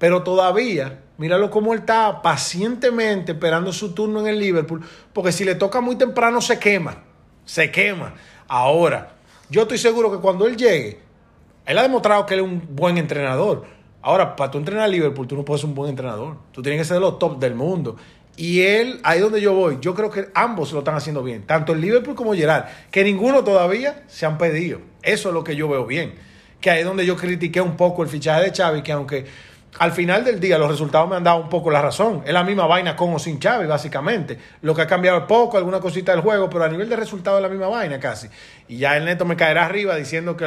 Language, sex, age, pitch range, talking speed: Spanish, male, 30-49, 150-200 Hz, 235 wpm